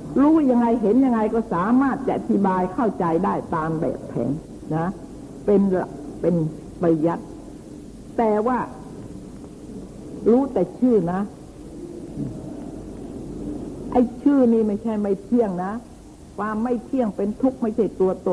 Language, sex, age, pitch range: Thai, female, 60-79, 190-240 Hz